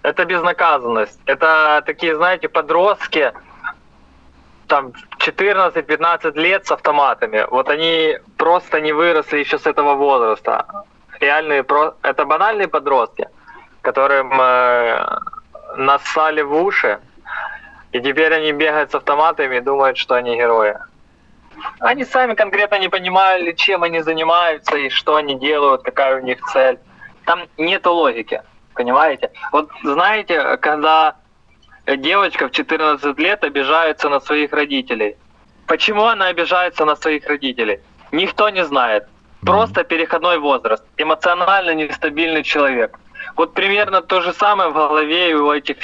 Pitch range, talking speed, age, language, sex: 145-185 Hz, 125 wpm, 20-39, Russian, male